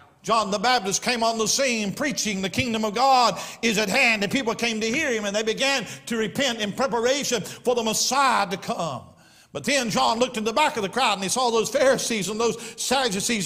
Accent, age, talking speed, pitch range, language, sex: American, 50-69, 225 wpm, 205-270 Hz, English, male